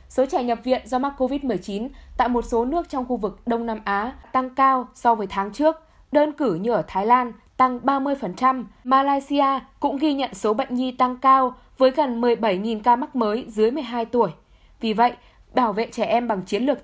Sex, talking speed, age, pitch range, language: female, 205 wpm, 10-29, 220-270 Hz, Vietnamese